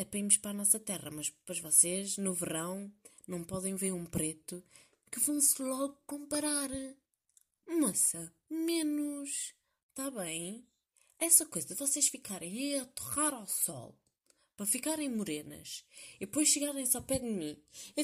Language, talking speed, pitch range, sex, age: Portuguese, 155 wpm, 170-255 Hz, female, 20-39